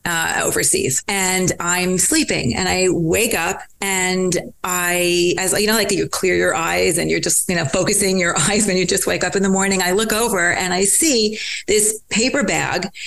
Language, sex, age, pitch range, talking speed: English, female, 40-59, 165-195 Hz, 200 wpm